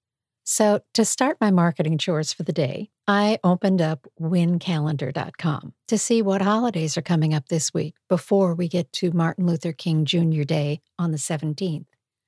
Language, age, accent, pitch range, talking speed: English, 50-69, American, 160-205 Hz, 165 wpm